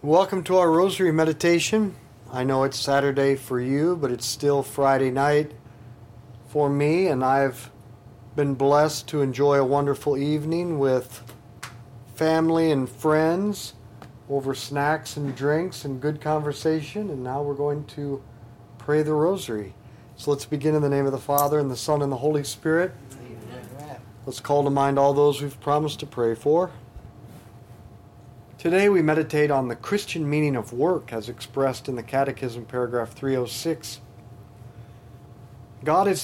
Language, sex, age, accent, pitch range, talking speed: English, male, 50-69, American, 120-150 Hz, 150 wpm